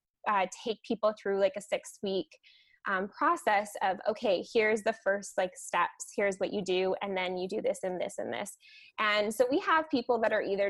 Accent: American